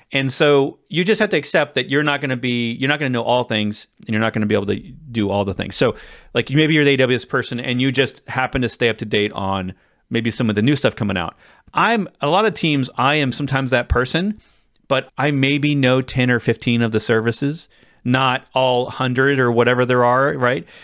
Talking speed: 245 wpm